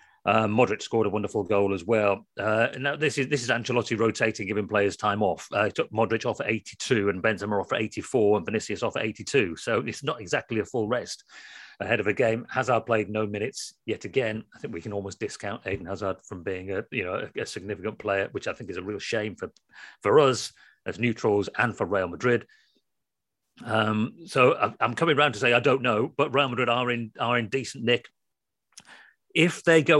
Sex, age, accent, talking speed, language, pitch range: male, 40-59, British, 220 wpm, English, 100-120 Hz